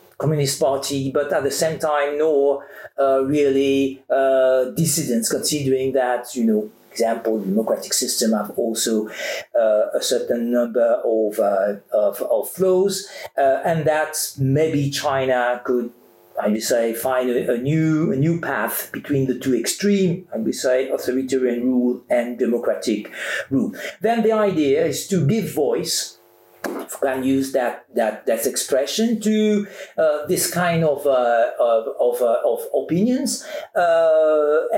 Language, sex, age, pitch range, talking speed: French, male, 50-69, 130-190 Hz, 145 wpm